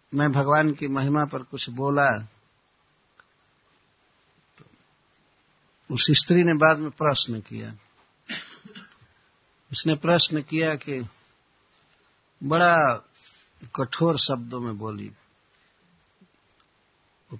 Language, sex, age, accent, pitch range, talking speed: Hindi, male, 60-79, native, 130-175 Hz, 85 wpm